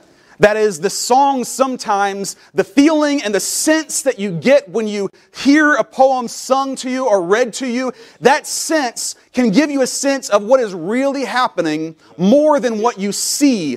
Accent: American